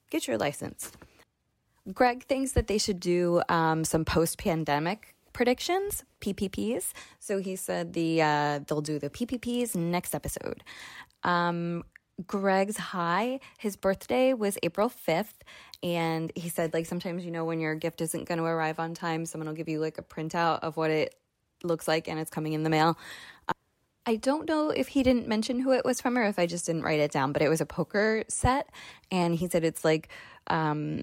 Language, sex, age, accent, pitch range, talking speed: English, female, 20-39, American, 160-195 Hz, 190 wpm